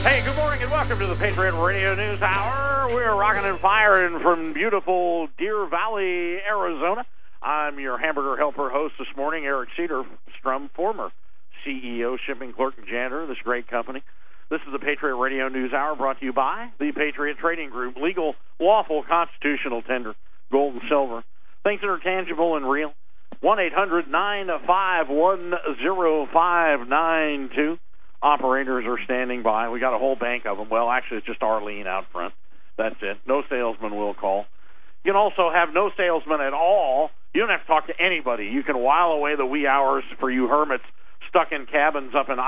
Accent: American